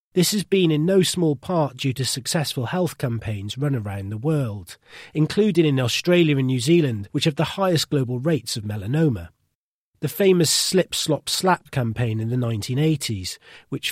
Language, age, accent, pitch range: English, 40-59, British, 120-165 Hz